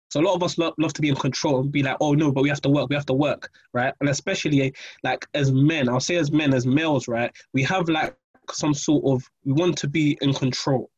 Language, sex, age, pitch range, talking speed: English, male, 20-39, 130-150 Hz, 275 wpm